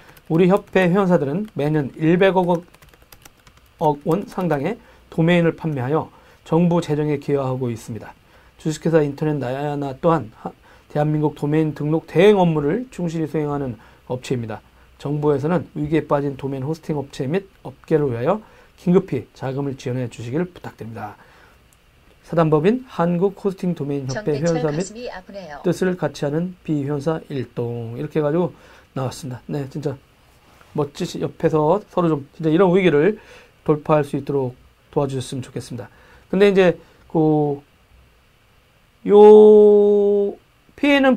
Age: 40-59